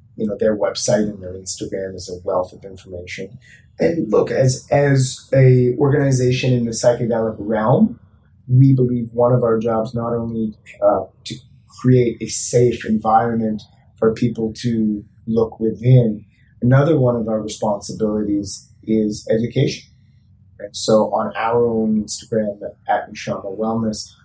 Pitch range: 110-125 Hz